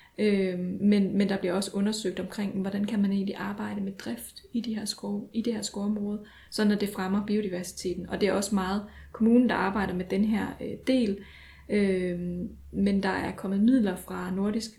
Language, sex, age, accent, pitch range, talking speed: Danish, female, 20-39, native, 185-210 Hz, 185 wpm